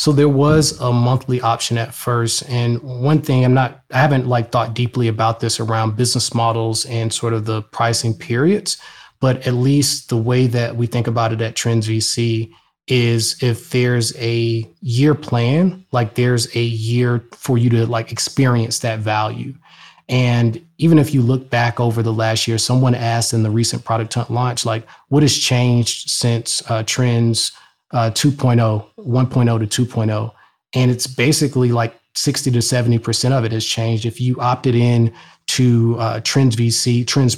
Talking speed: 180 wpm